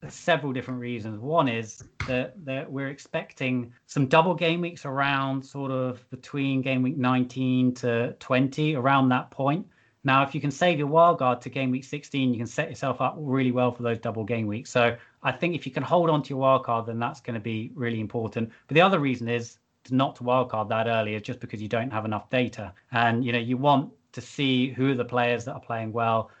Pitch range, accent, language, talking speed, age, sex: 120-135 Hz, British, English, 230 wpm, 20-39, male